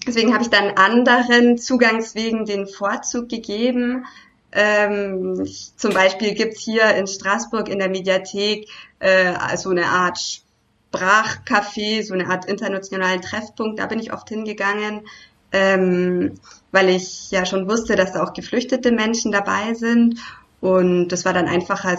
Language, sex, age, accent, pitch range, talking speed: German, female, 20-39, German, 185-215 Hz, 145 wpm